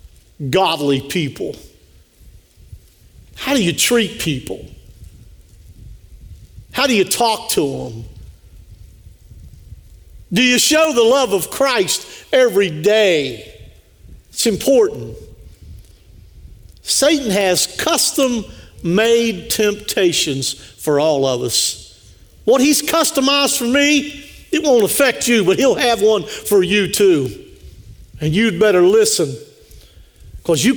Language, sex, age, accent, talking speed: English, male, 50-69, American, 105 wpm